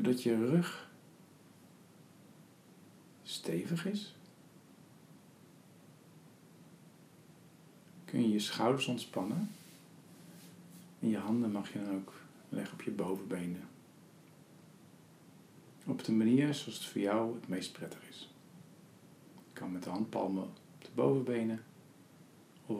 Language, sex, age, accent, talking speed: Dutch, male, 50-69, Dutch, 110 wpm